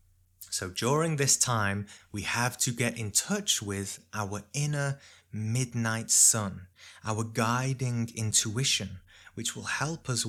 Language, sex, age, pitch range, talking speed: English, male, 20-39, 105-125 Hz, 130 wpm